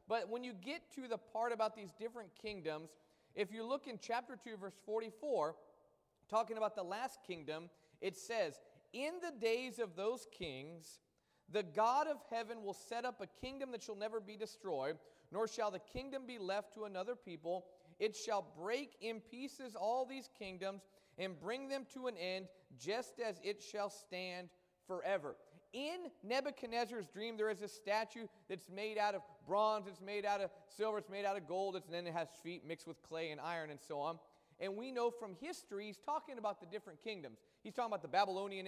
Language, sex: English, male